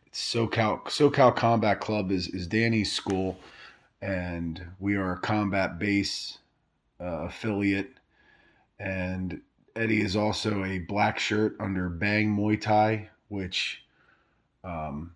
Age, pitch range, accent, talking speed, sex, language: 30-49, 95-105 Hz, American, 115 wpm, male, English